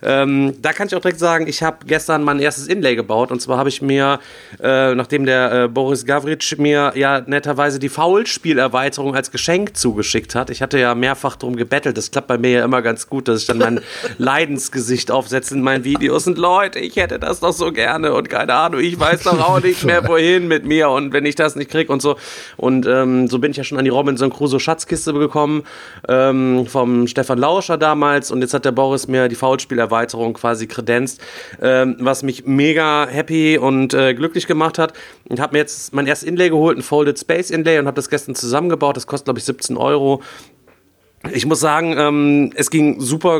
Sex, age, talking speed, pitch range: male, 30-49, 210 wpm, 130-155 Hz